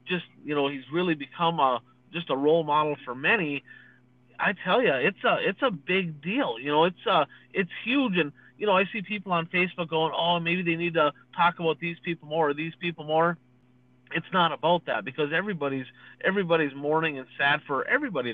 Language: English